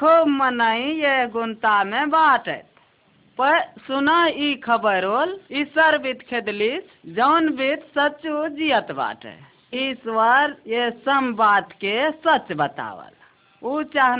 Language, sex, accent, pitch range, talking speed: Hindi, female, native, 225-285 Hz, 110 wpm